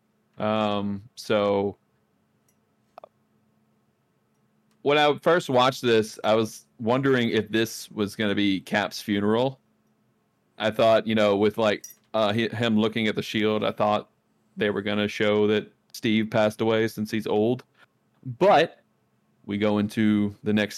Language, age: English, 30-49